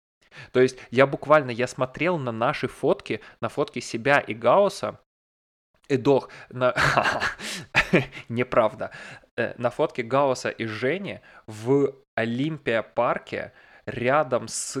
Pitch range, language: 105-130 Hz, Russian